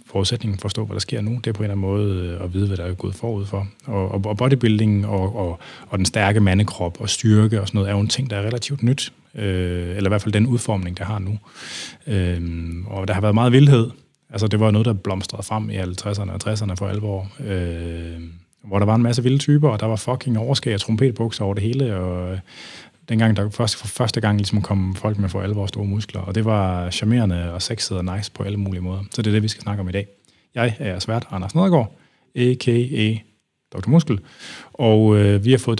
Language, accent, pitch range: Danish, native, 95-115 Hz